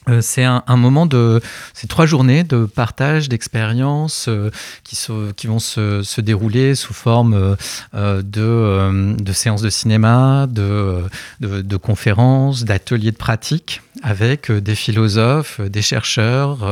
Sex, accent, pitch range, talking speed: male, French, 110-125 Hz, 140 wpm